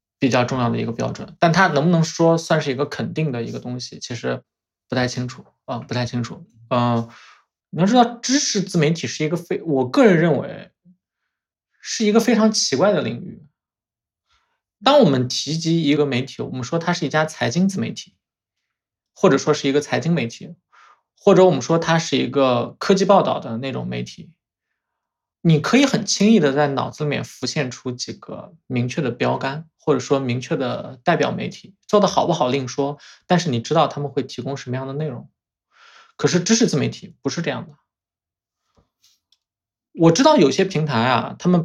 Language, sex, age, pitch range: Chinese, male, 20-39, 130-180 Hz